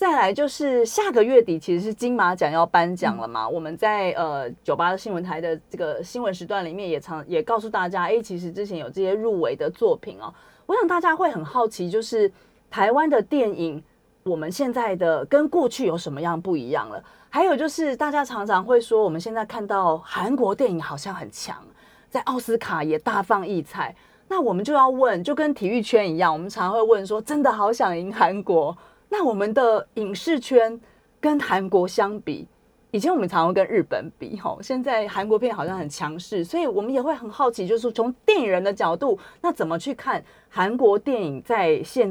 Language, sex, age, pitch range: Chinese, female, 30-49, 175-260 Hz